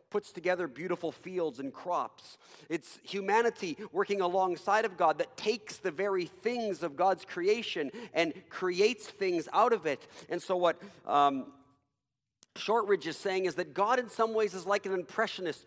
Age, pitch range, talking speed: 50-69, 145-230 Hz, 165 wpm